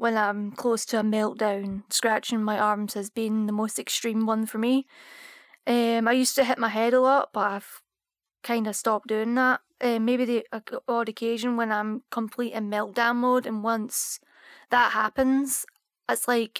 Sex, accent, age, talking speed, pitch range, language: female, British, 20-39, 185 wpm, 215-250 Hz, English